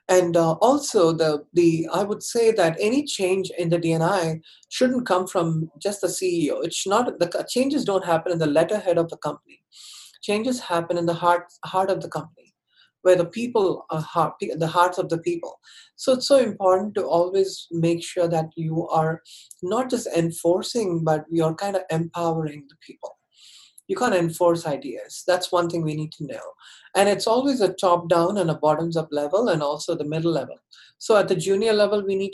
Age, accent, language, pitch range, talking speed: 30-49, Indian, English, 165-195 Hz, 195 wpm